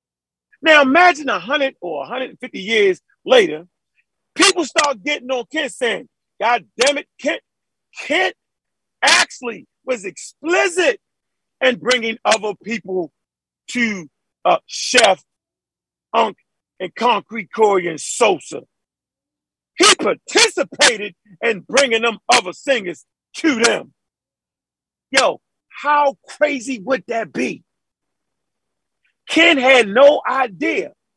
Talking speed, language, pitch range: 100 wpm, English, 215-280 Hz